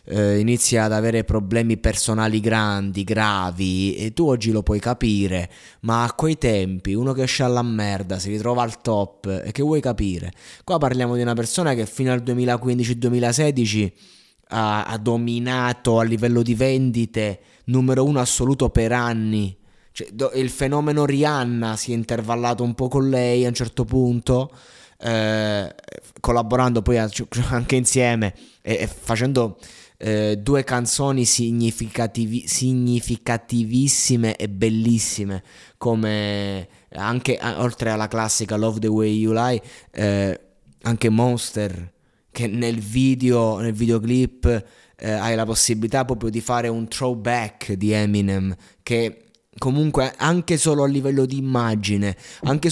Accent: native